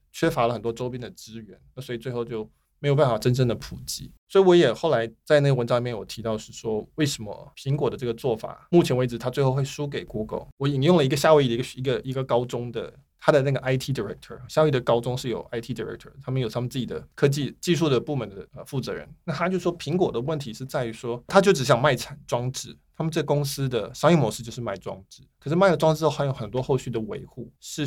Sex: male